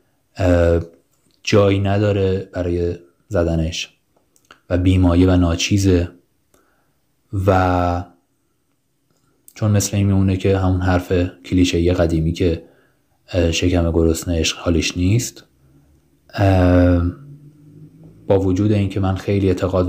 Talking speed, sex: 90 wpm, male